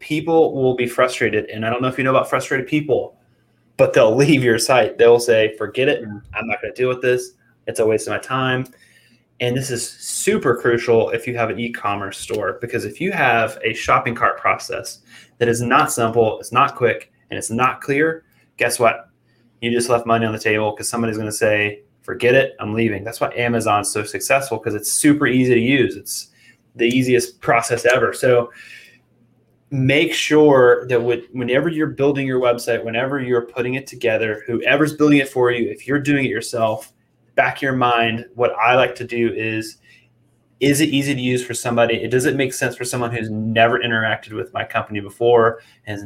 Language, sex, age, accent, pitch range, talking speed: English, male, 20-39, American, 115-130 Hz, 200 wpm